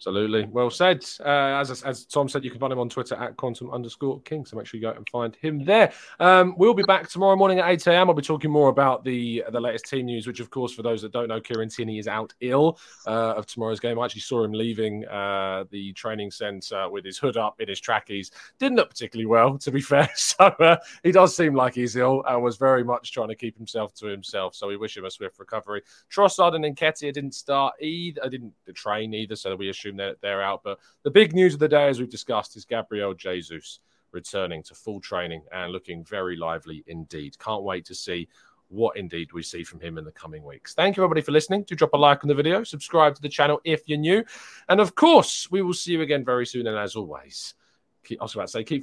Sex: male